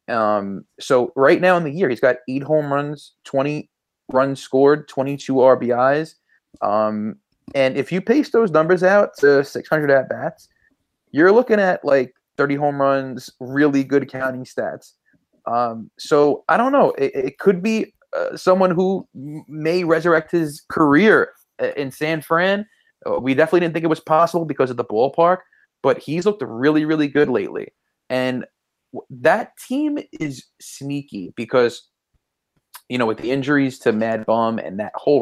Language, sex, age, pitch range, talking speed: English, male, 20-39, 130-175 Hz, 160 wpm